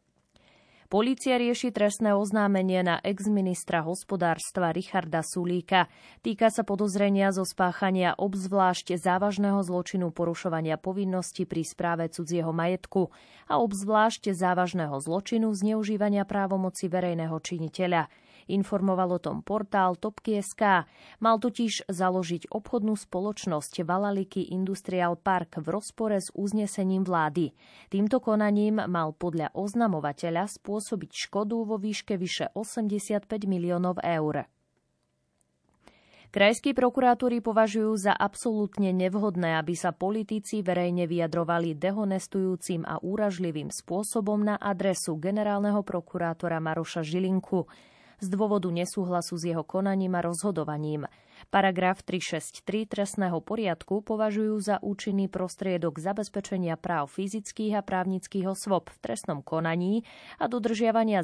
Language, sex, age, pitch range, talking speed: Slovak, female, 20-39, 175-210 Hz, 105 wpm